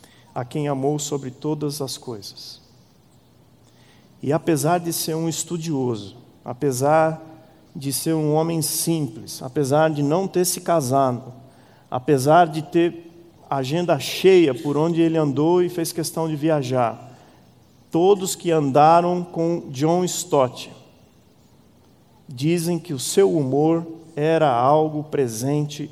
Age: 50-69